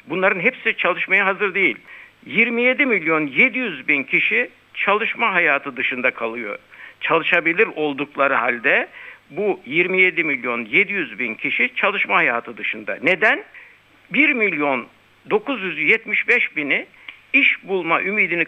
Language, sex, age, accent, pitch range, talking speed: Turkish, male, 60-79, native, 160-230 Hz, 110 wpm